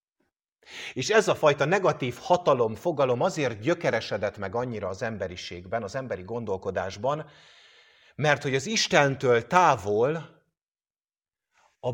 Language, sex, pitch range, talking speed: English, male, 110-150 Hz, 110 wpm